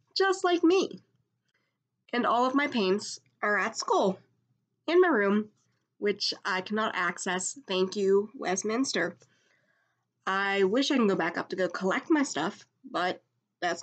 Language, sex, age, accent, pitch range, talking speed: English, female, 20-39, American, 180-245 Hz, 150 wpm